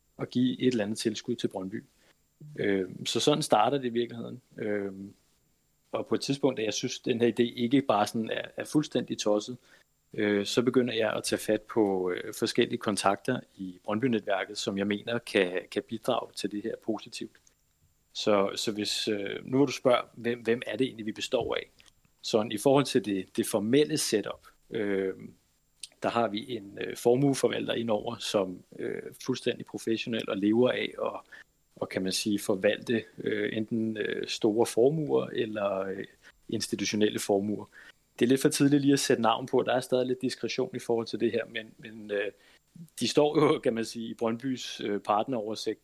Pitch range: 105-125 Hz